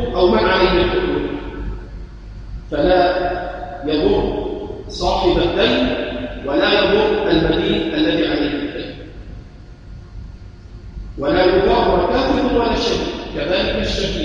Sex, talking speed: male, 70 wpm